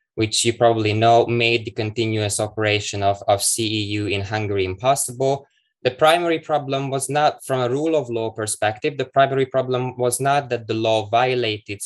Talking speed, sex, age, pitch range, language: 170 wpm, male, 20-39, 105-125 Hz, English